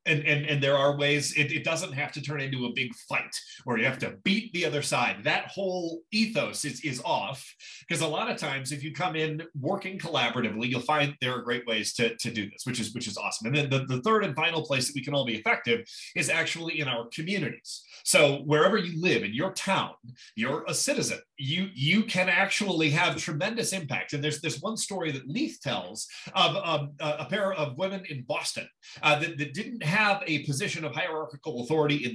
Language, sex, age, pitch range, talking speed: English, male, 30-49, 140-185 Hz, 225 wpm